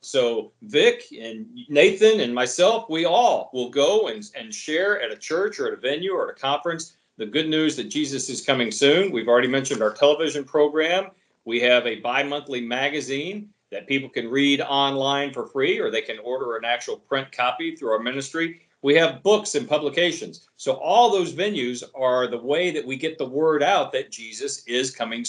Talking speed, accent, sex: 195 wpm, American, male